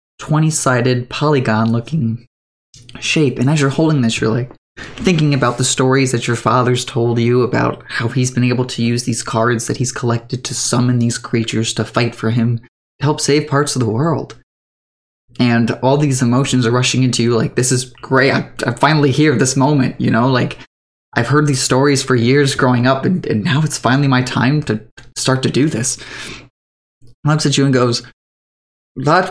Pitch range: 120-150 Hz